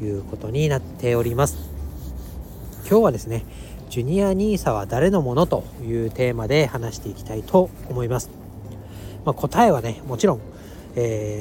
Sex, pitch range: male, 105-135 Hz